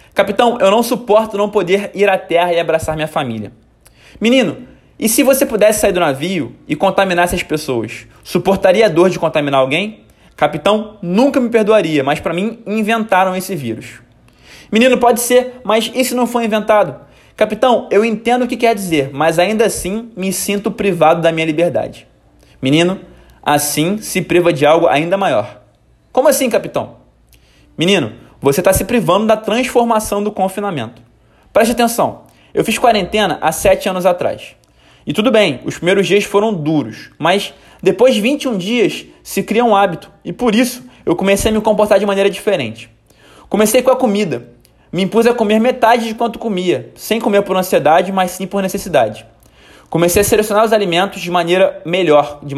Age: 20-39